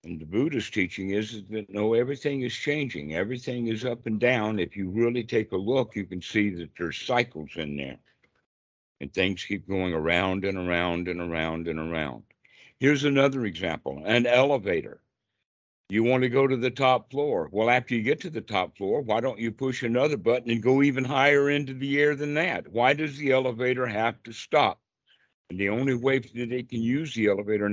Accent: American